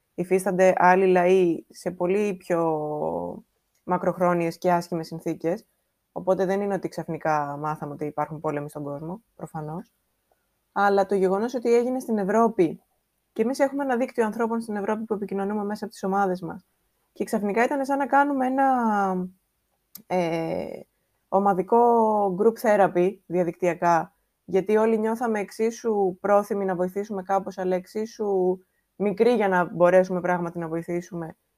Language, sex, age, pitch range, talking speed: Greek, female, 20-39, 170-215 Hz, 140 wpm